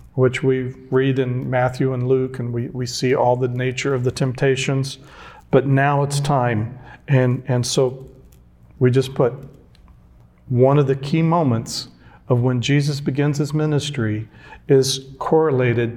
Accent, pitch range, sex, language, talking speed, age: American, 120-145 Hz, male, English, 150 wpm, 40-59